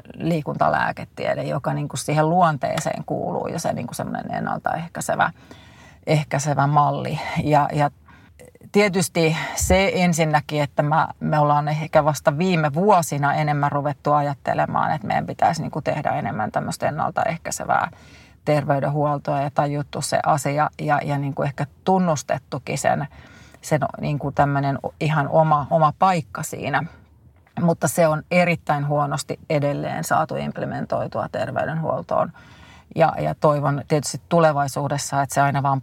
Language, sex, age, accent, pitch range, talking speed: Finnish, female, 30-49, native, 145-160 Hz, 115 wpm